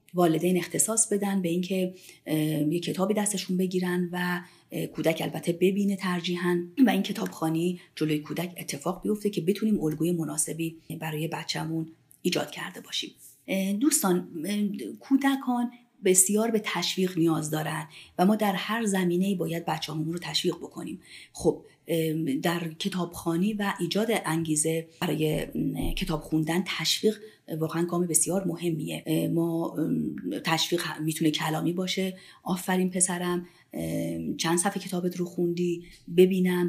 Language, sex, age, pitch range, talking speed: Persian, female, 30-49, 160-190 Hz, 125 wpm